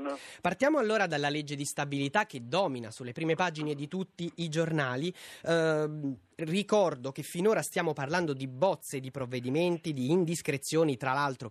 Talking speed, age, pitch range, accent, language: 150 wpm, 30-49, 130-165 Hz, native, Italian